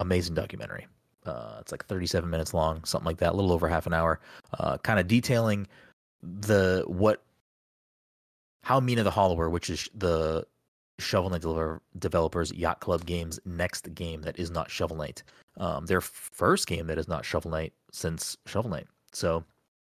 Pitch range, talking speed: 80-100 Hz, 165 wpm